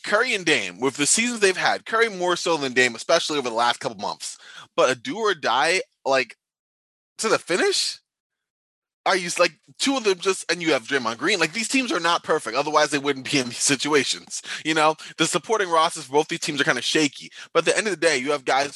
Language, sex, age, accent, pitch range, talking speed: English, male, 20-39, American, 140-185 Hz, 245 wpm